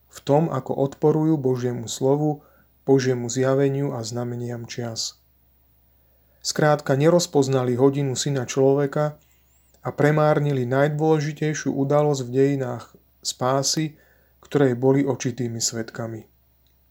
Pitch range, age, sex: 120-145 Hz, 30-49, male